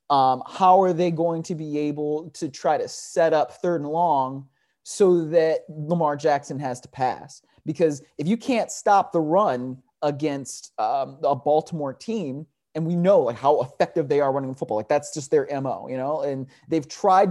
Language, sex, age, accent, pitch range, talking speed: English, male, 30-49, American, 140-175 Hz, 190 wpm